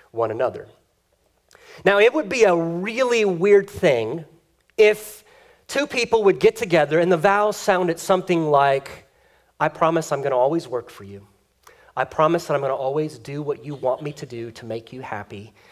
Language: English